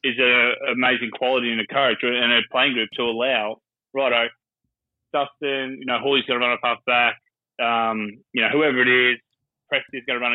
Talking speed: 195 wpm